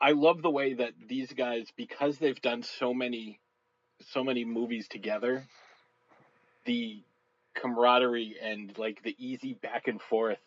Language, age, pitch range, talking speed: English, 30-49, 105-130 Hz, 145 wpm